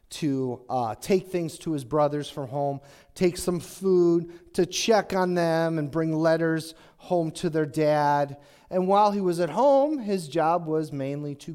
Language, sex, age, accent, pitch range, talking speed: English, male, 40-59, American, 130-180 Hz, 175 wpm